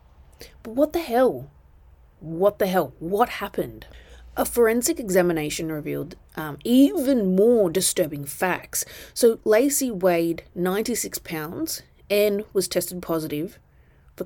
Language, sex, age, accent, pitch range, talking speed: English, female, 30-49, Australian, 165-220 Hz, 120 wpm